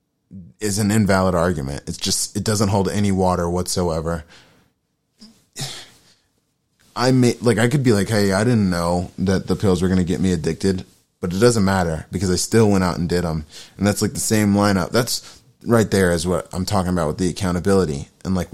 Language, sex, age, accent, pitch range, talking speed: English, male, 20-39, American, 90-100 Hz, 205 wpm